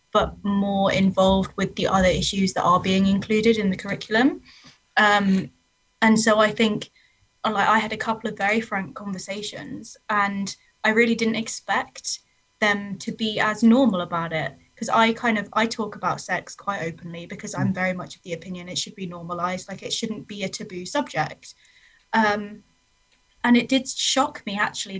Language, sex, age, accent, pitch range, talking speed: English, female, 20-39, British, 185-225 Hz, 180 wpm